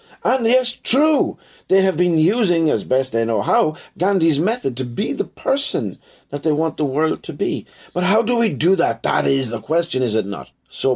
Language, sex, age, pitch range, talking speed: English, male, 50-69, 115-190 Hz, 215 wpm